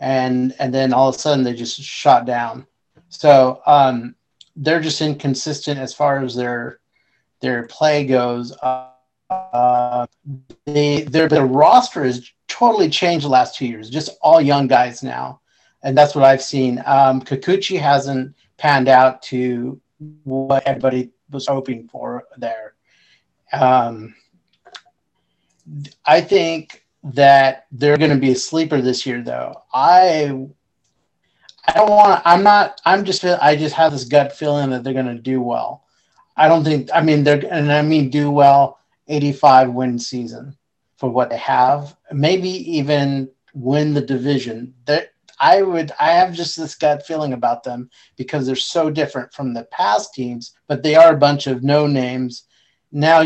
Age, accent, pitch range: 30-49, American, 130-150 Hz